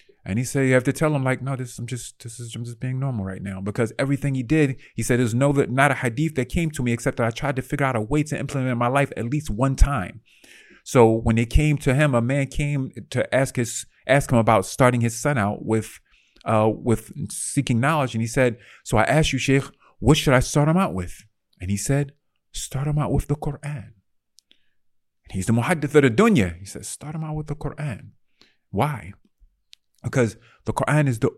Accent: American